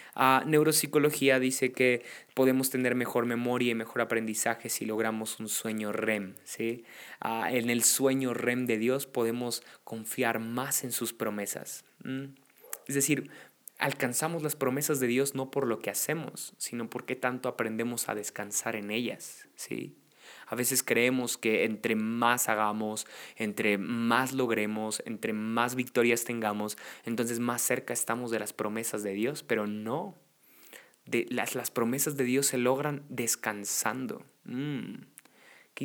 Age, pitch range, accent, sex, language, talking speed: 20-39, 115-135 Hz, Mexican, male, Spanish, 145 wpm